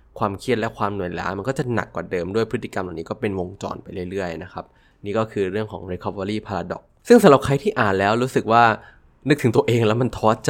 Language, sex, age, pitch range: Thai, male, 20-39, 100-125 Hz